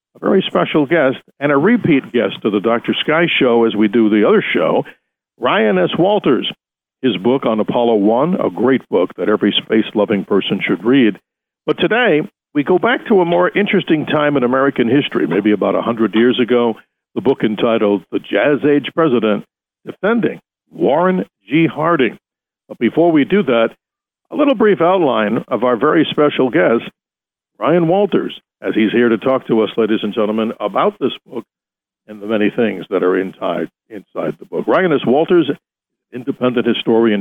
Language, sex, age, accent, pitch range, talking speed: English, male, 60-79, American, 115-155 Hz, 175 wpm